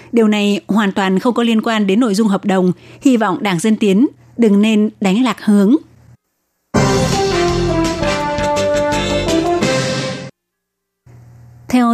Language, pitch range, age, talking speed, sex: Vietnamese, 195-240 Hz, 20-39, 120 wpm, female